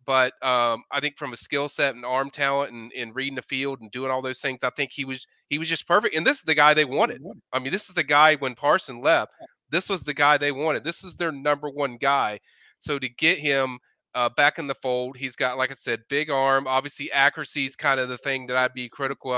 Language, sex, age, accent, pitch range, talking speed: English, male, 30-49, American, 130-150 Hz, 260 wpm